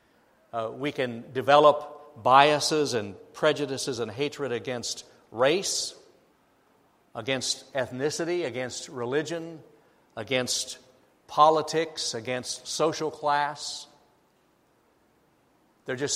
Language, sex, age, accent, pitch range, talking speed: English, male, 60-79, American, 130-155 Hz, 85 wpm